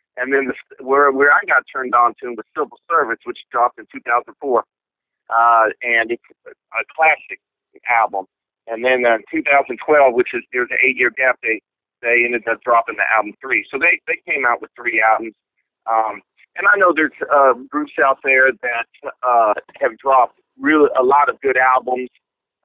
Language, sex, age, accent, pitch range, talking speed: English, male, 40-59, American, 115-155 Hz, 185 wpm